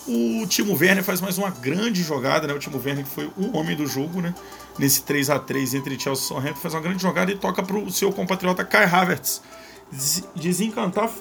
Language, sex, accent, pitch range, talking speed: Portuguese, male, Brazilian, 150-195 Hz, 205 wpm